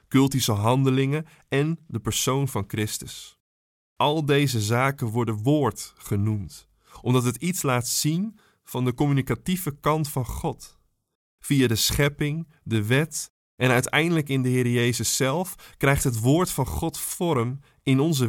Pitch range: 120-150 Hz